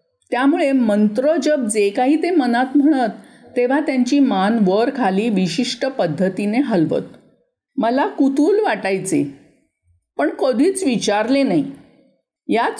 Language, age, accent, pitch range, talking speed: Marathi, 50-69, native, 205-290 Hz, 115 wpm